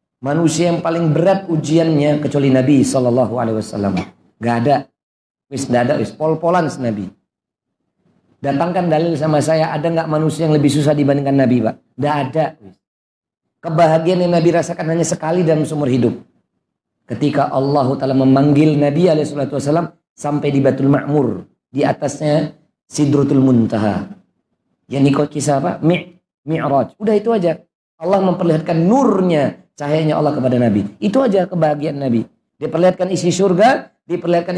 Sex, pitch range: male, 130-175 Hz